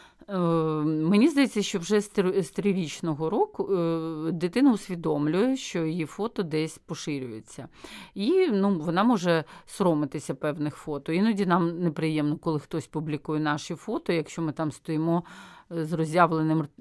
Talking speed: 125 wpm